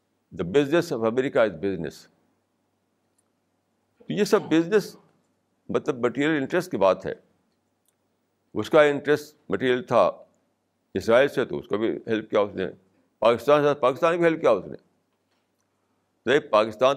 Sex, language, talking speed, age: male, Urdu, 140 wpm, 60-79